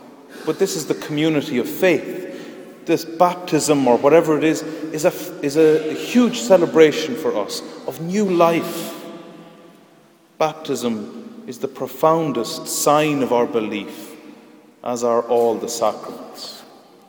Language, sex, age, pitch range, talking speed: English, male, 30-49, 120-180 Hz, 125 wpm